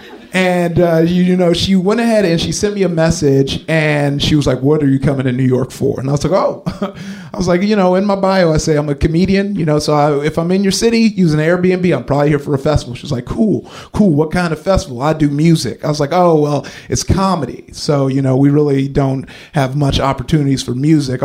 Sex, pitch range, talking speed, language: male, 145-190 Hz, 255 wpm, English